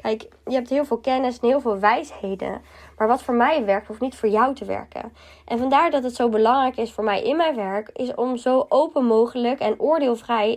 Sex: female